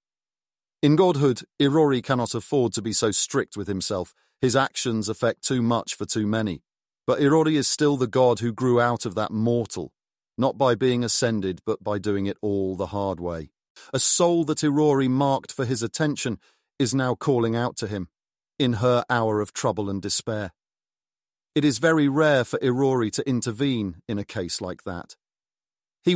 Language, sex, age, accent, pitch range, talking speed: English, male, 40-59, British, 105-135 Hz, 180 wpm